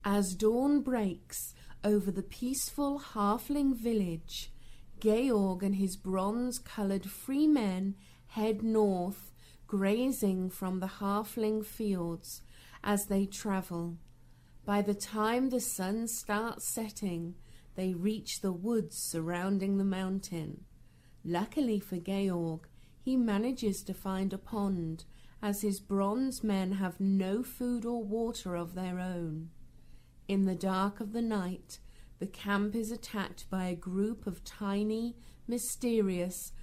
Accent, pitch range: British, 185-220 Hz